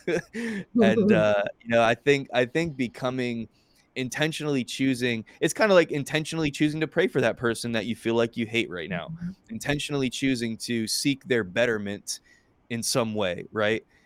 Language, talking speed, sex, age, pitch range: English, 170 wpm, male, 20-39, 110-140 Hz